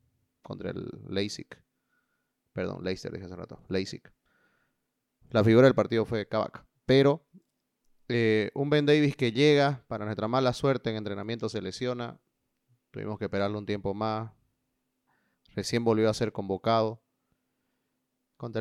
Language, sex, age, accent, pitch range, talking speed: Spanish, male, 30-49, Venezuelan, 110-130 Hz, 135 wpm